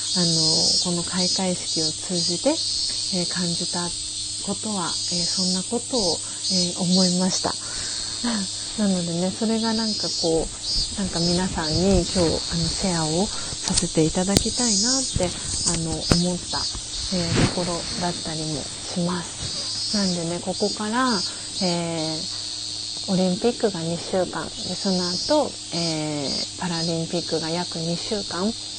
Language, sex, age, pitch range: Japanese, female, 30-49, 165-190 Hz